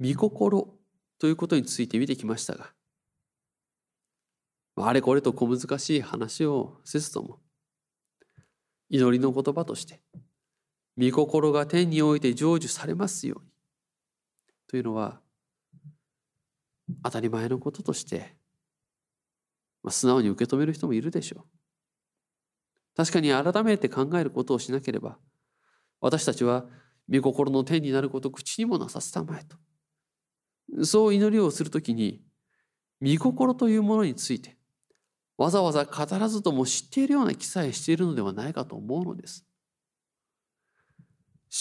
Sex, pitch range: male, 135-195 Hz